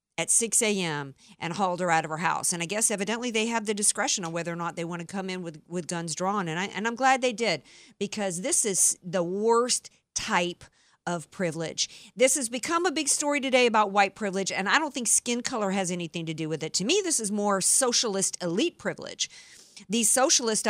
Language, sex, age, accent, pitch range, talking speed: English, female, 50-69, American, 190-265 Hz, 225 wpm